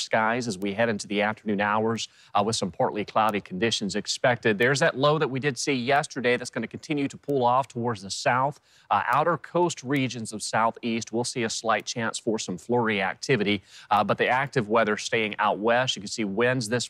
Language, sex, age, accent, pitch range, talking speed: English, male, 30-49, American, 110-130 Hz, 215 wpm